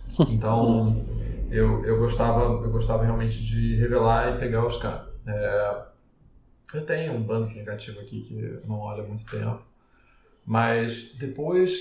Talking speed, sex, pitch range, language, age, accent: 140 wpm, male, 110-120 Hz, Portuguese, 20-39, Brazilian